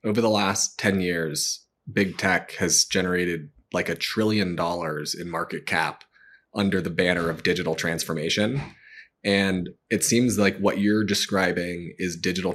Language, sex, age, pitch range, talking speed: English, male, 20-39, 90-105 Hz, 150 wpm